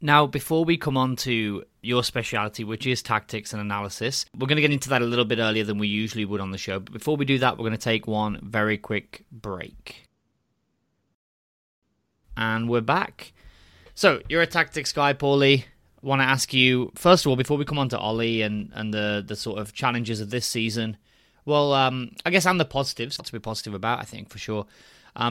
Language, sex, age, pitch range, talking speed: English, male, 20-39, 115-145 Hz, 220 wpm